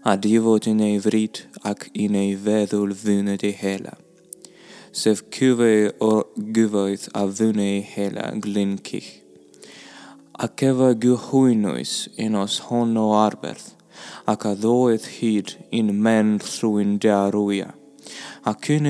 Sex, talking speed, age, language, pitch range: male, 110 wpm, 20-39, English, 105-120 Hz